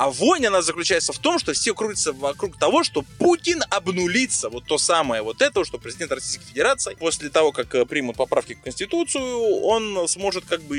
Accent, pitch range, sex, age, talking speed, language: native, 150-225 Hz, male, 20-39, 190 wpm, Russian